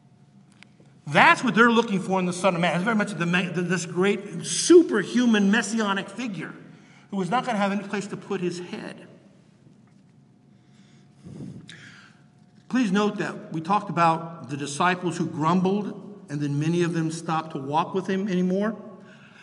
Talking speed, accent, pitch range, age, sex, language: 160 wpm, American, 160-195 Hz, 50-69, male, English